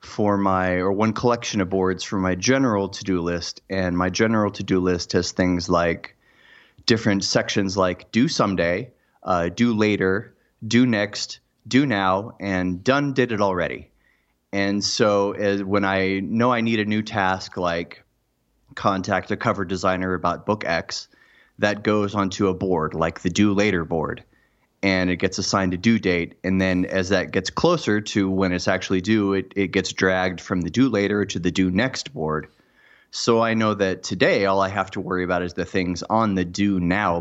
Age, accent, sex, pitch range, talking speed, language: 30-49, American, male, 90-105 Hz, 185 wpm, English